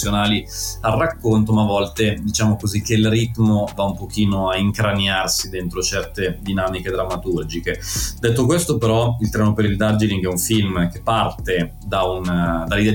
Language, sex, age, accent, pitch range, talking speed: Italian, male, 30-49, native, 90-110 Hz, 160 wpm